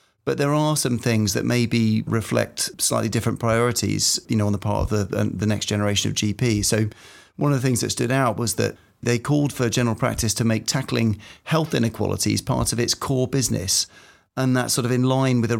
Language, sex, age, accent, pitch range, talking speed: English, male, 30-49, British, 105-120 Hz, 215 wpm